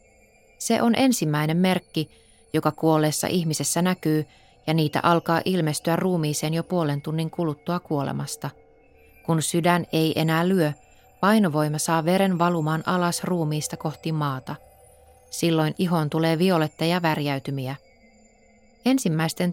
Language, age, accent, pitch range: Finnish, 20-39, native, 155-185 Hz